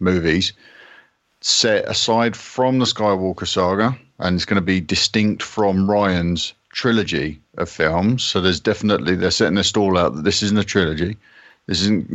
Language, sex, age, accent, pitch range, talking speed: English, male, 50-69, British, 90-105 Hz, 165 wpm